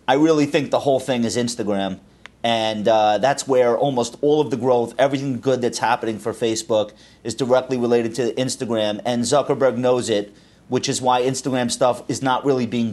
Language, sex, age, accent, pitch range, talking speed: English, male, 30-49, American, 110-145 Hz, 190 wpm